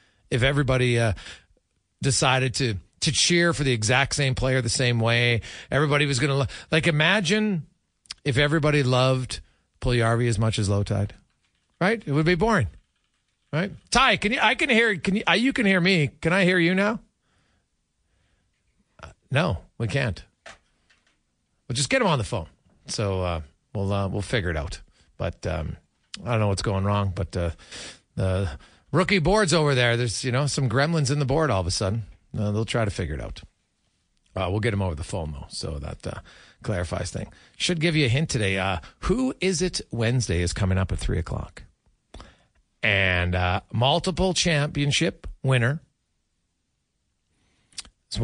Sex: male